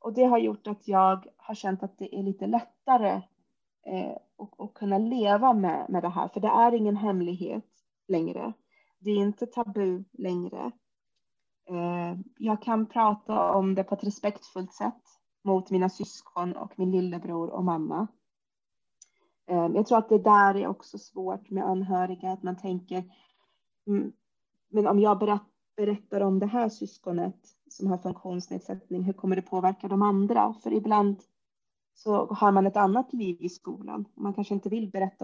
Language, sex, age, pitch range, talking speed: Swedish, female, 30-49, 185-220 Hz, 160 wpm